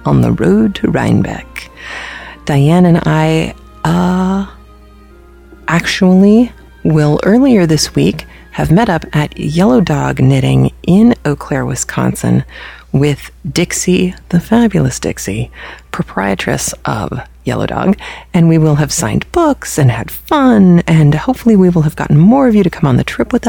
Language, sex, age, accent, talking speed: English, female, 30-49, American, 150 wpm